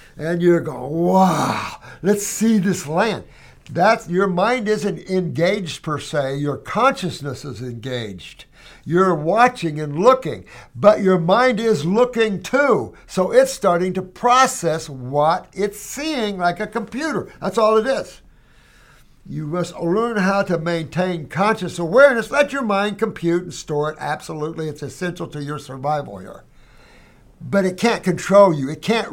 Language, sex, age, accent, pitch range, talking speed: English, male, 60-79, American, 145-195 Hz, 150 wpm